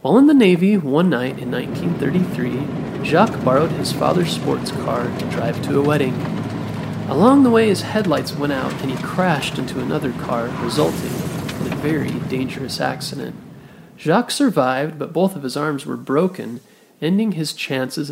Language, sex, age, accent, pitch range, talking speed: English, male, 30-49, American, 135-210 Hz, 165 wpm